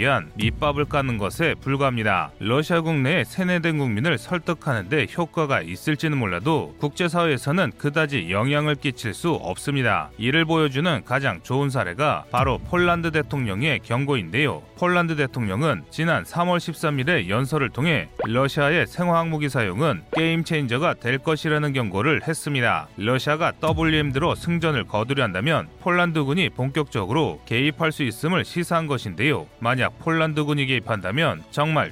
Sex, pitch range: male, 125-160 Hz